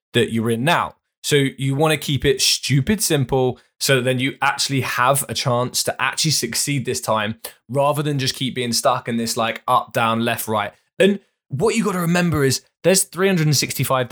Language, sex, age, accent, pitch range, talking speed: English, male, 20-39, British, 120-155 Hz, 200 wpm